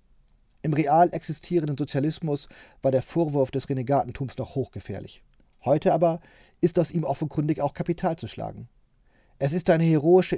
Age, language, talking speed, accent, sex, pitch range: 40-59, German, 145 wpm, German, male, 130-160 Hz